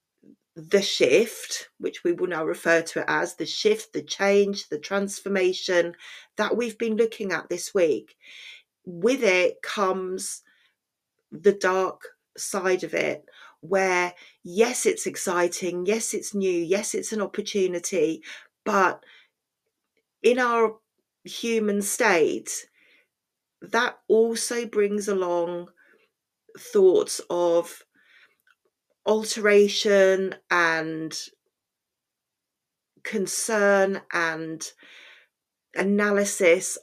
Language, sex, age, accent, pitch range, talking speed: English, female, 40-59, British, 185-235 Hz, 95 wpm